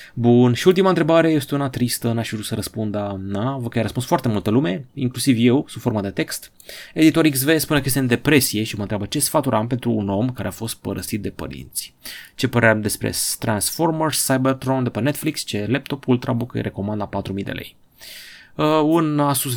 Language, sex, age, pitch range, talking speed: Romanian, male, 30-49, 105-135 Hz, 205 wpm